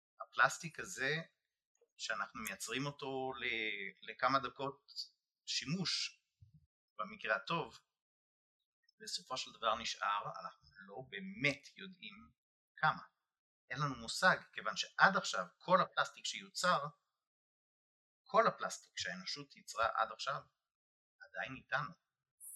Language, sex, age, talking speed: Hebrew, male, 30-49, 95 wpm